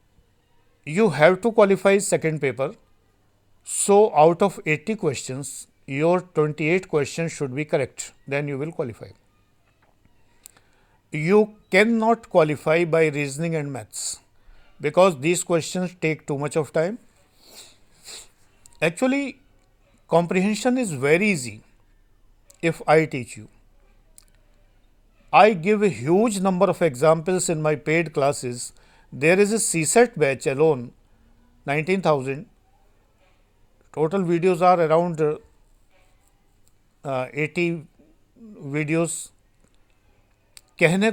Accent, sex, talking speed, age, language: native, male, 105 wpm, 50-69, Hindi